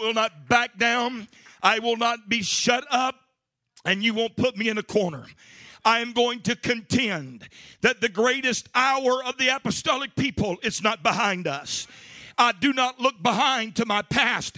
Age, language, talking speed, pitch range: 50-69, English, 175 wpm, 225-280 Hz